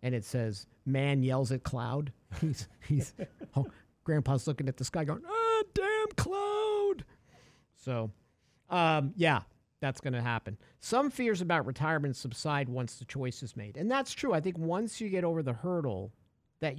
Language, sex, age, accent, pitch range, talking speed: English, male, 50-69, American, 125-185 Hz, 175 wpm